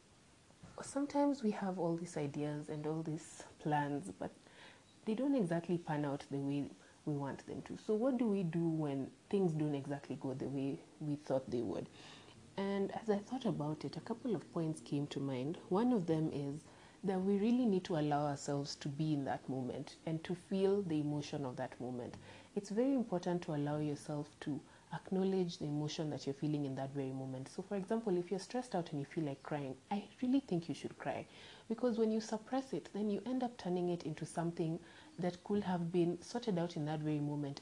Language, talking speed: English, 210 wpm